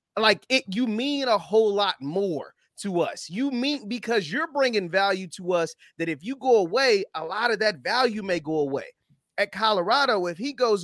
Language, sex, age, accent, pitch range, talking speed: English, male, 30-49, American, 175-255 Hz, 200 wpm